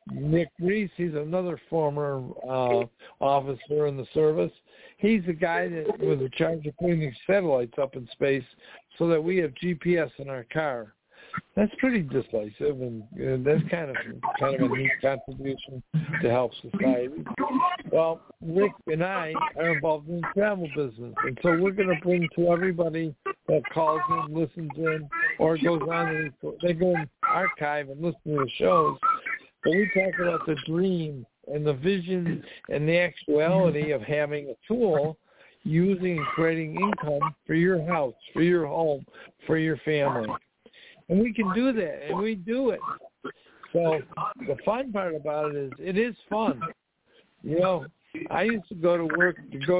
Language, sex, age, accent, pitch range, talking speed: English, male, 60-79, American, 150-180 Hz, 170 wpm